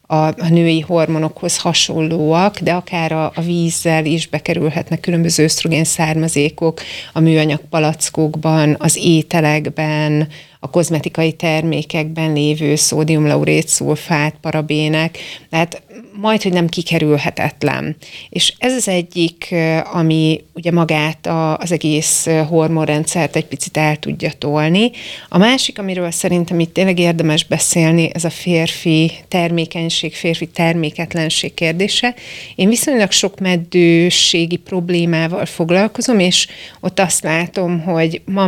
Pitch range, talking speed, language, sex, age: 155-175 Hz, 115 wpm, Hungarian, female, 30-49